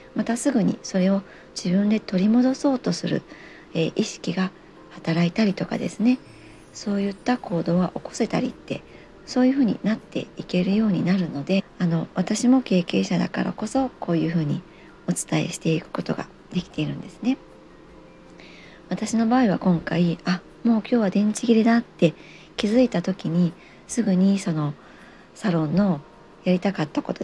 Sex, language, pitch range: male, Japanese, 175-225 Hz